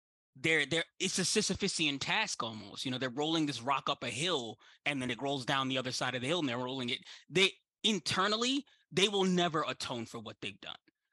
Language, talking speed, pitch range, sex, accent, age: English, 220 wpm, 120-165 Hz, male, American, 20-39